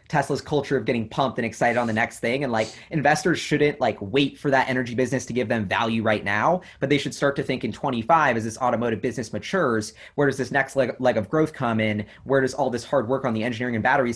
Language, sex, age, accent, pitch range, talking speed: English, male, 20-39, American, 110-135 Hz, 260 wpm